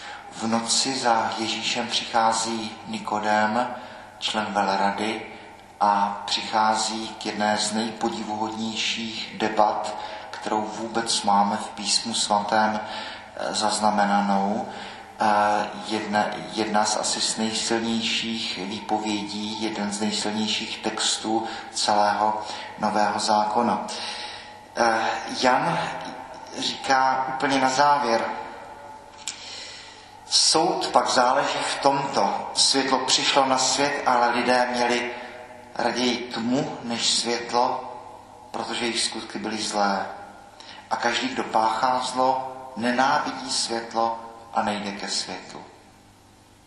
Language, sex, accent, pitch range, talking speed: Czech, male, native, 105-120 Hz, 95 wpm